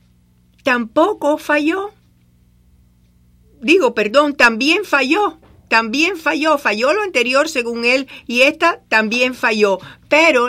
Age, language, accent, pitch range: 50-69, English, American, 185-250 Hz